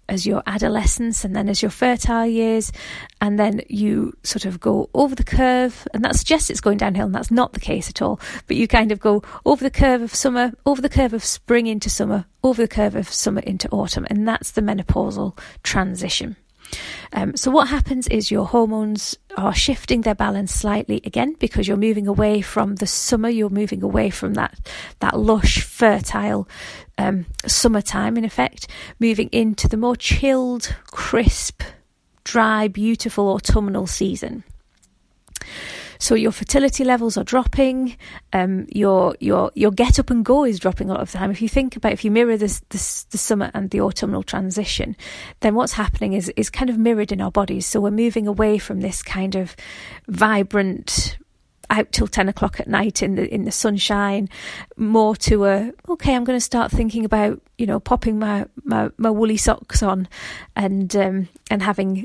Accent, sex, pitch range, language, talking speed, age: British, female, 200-235 Hz, English, 185 wpm, 40-59